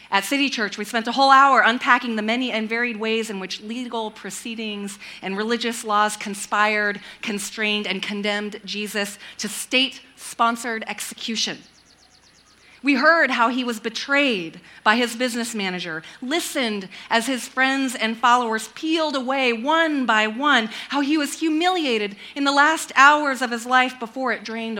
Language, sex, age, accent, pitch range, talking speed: English, female, 30-49, American, 205-250 Hz, 155 wpm